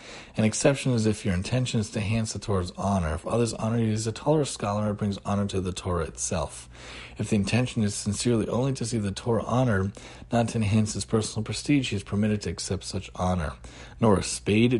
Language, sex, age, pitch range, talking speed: English, male, 40-59, 100-125 Hz, 220 wpm